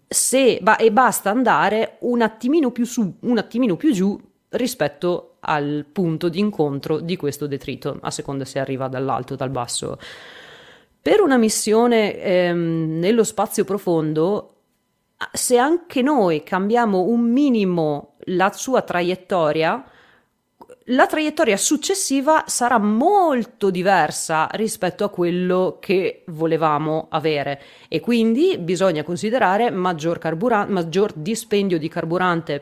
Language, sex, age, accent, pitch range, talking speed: Italian, female, 30-49, native, 165-225 Hz, 120 wpm